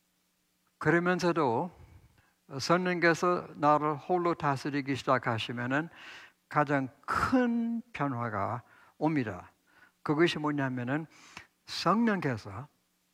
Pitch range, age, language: 125-165 Hz, 60-79, Korean